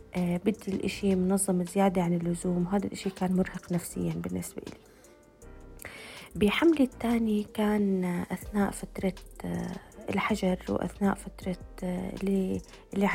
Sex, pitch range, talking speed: female, 180-195 Hz, 100 wpm